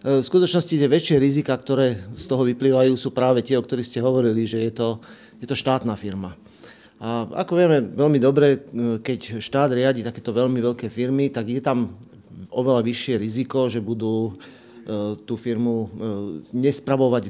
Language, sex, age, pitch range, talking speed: Slovak, male, 40-59, 115-135 Hz, 160 wpm